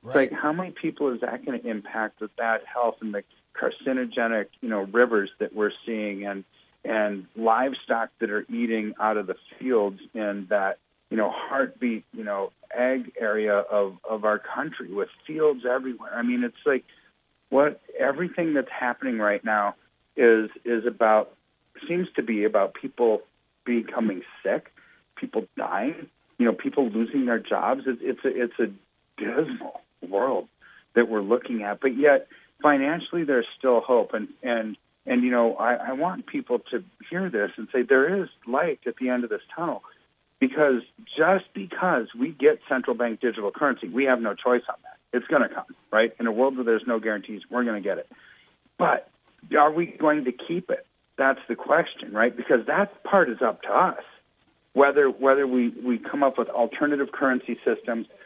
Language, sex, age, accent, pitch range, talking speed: English, male, 40-59, American, 110-140 Hz, 180 wpm